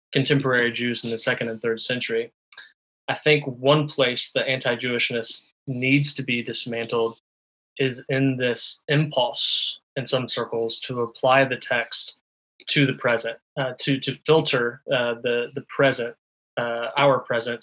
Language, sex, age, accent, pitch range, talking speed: English, male, 20-39, American, 115-135 Hz, 145 wpm